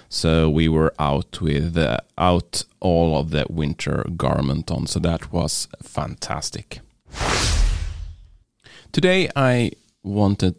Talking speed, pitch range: 115 wpm, 75-110 Hz